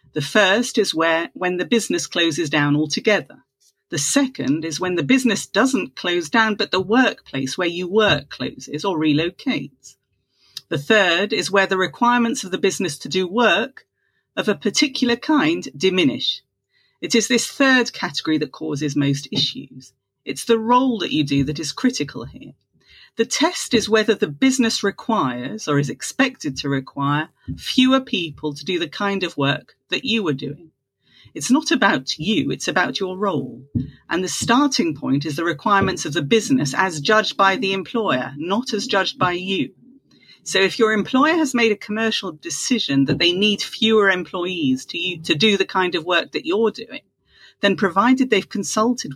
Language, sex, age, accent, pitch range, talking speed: English, female, 40-59, British, 155-230 Hz, 175 wpm